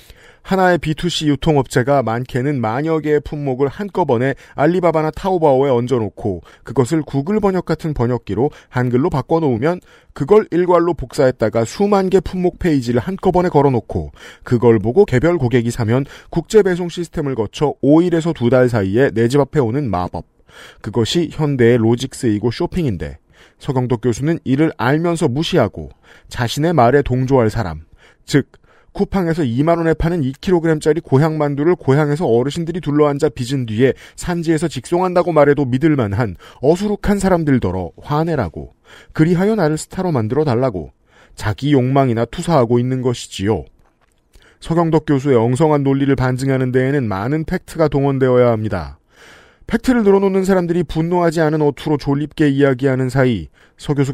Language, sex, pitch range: Korean, male, 120-160 Hz